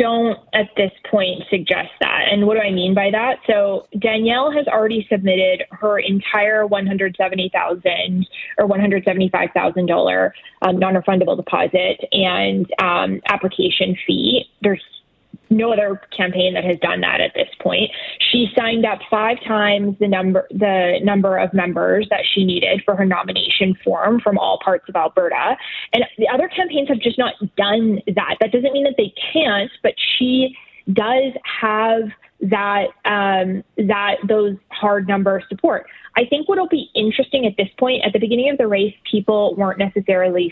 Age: 20-39